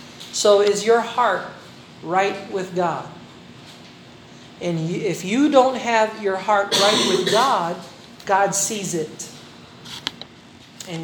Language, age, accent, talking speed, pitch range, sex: Filipino, 40-59, American, 115 wpm, 180-245 Hz, male